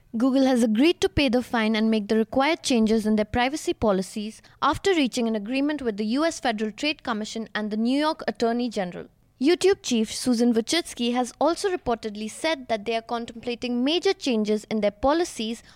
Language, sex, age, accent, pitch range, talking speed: English, female, 20-39, Indian, 220-300 Hz, 185 wpm